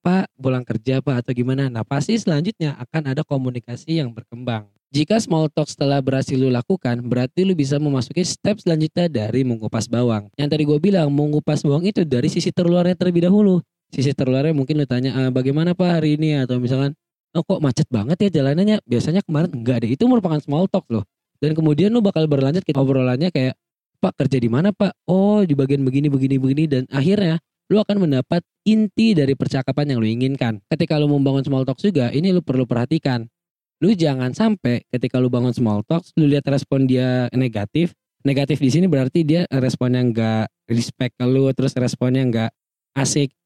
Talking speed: 185 wpm